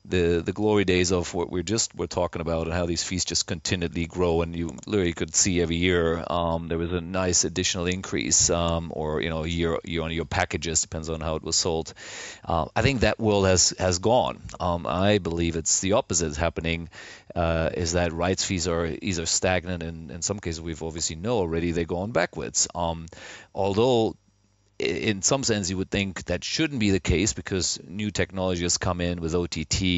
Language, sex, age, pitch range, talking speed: English, male, 30-49, 85-100 Hz, 210 wpm